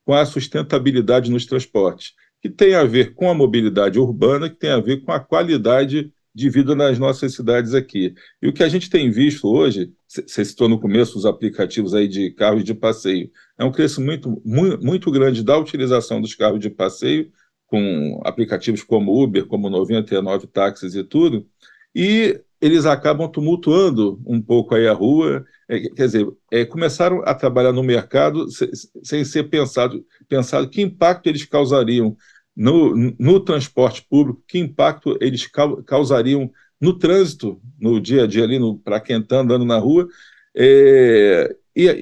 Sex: male